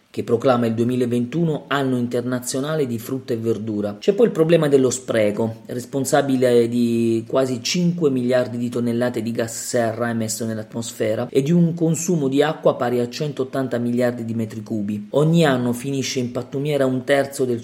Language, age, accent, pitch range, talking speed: Italian, 40-59, native, 120-150 Hz, 165 wpm